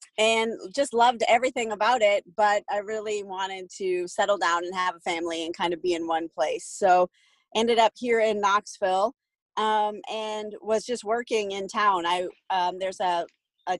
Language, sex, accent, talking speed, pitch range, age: English, female, American, 185 wpm, 180-220 Hz, 30-49